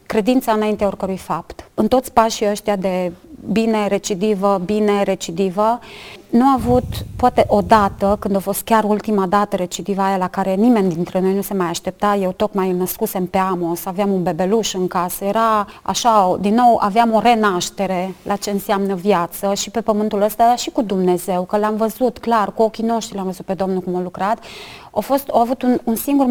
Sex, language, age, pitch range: female, Romanian, 30-49, 195-225 Hz